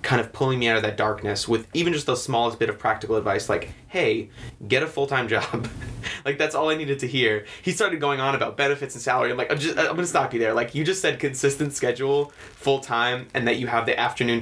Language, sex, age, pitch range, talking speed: English, male, 20-39, 110-130 Hz, 245 wpm